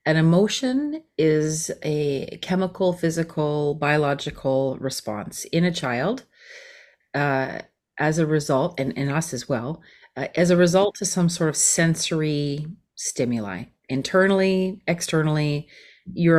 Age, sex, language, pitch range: 30-49, female, English, 145-195 Hz